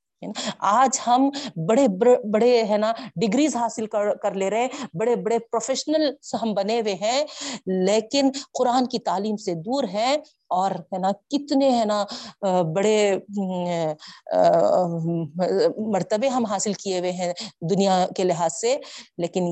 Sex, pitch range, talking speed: female, 185-250 Hz, 130 wpm